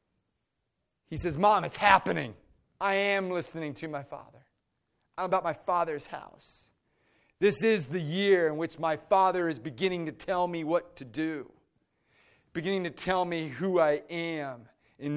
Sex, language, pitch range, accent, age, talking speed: male, English, 120-160 Hz, American, 40-59, 160 wpm